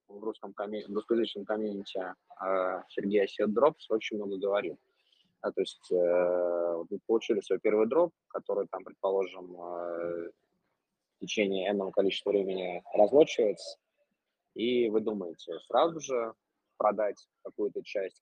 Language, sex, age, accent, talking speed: Russian, male, 20-39, native, 130 wpm